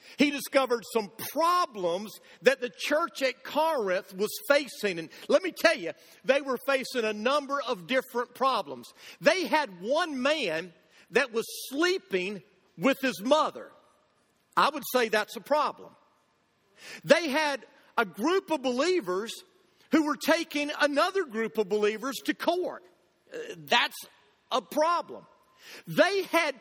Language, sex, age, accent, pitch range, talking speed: English, male, 50-69, American, 235-320 Hz, 135 wpm